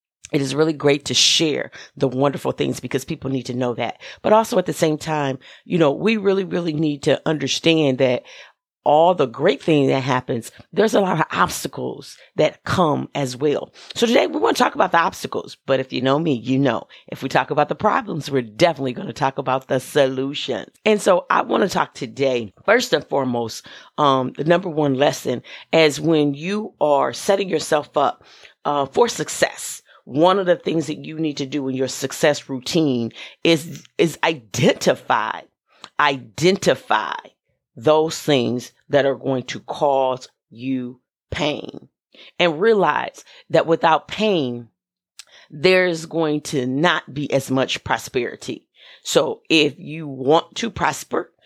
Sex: female